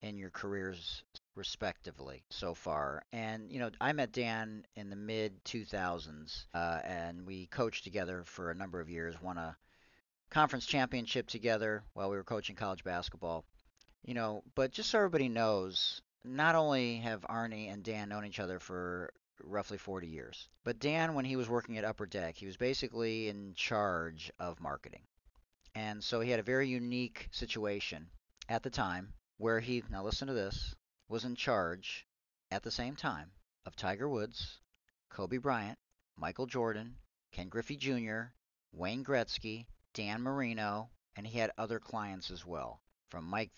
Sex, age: male, 40-59